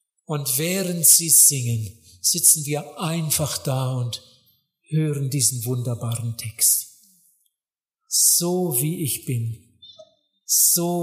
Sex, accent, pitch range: male, German, 125-170 Hz